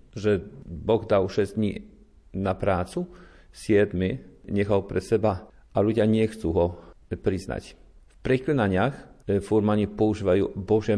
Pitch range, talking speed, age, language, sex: 95-110 Hz, 120 wpm, 40-59, Slovak, male